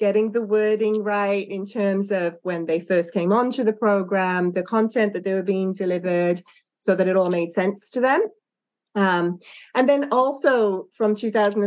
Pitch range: 175-225 Hz